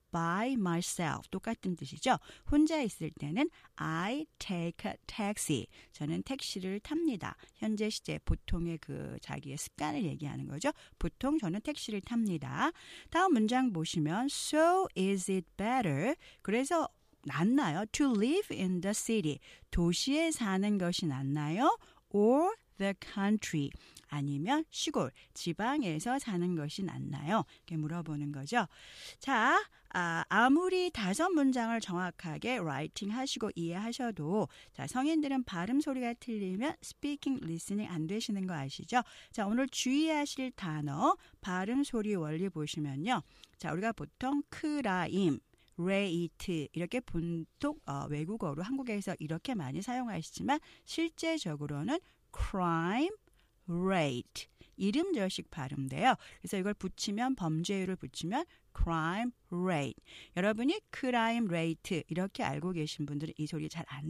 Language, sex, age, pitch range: Korean, female, 40-59, 165-265 Hz